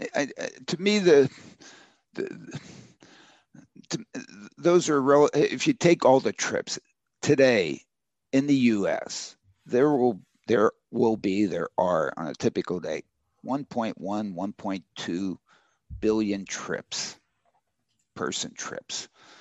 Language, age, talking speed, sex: English, 50-69, 120 wpm, male